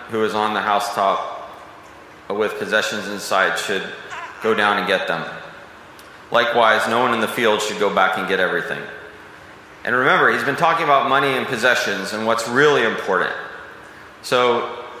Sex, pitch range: male, 100-120 Hz